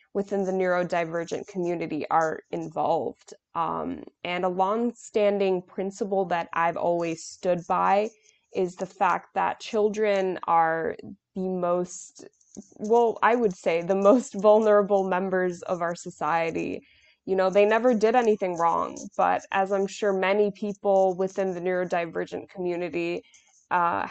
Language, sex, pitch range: English, female, 170-205 Hz